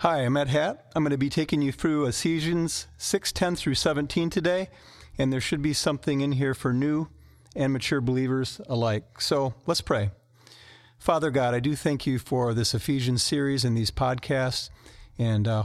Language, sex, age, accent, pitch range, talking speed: English, male, 40-59, American, 120-145 Hz, 180 wpm